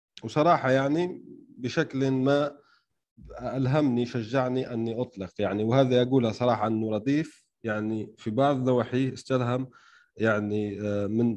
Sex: male